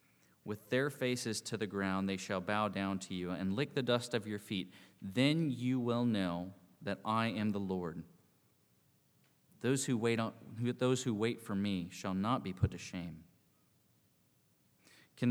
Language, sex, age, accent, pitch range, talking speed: English, male, 30-49, American, 95-115 Hz, 175 wpm